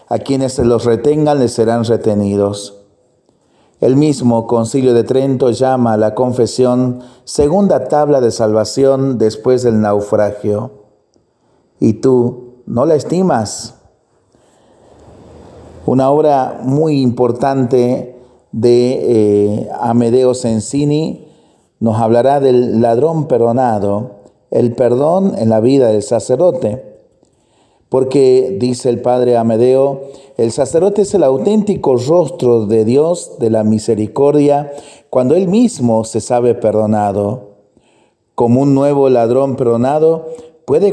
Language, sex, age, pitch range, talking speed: Spanish, male, 40-59, 110-135 Hz, 115 wpm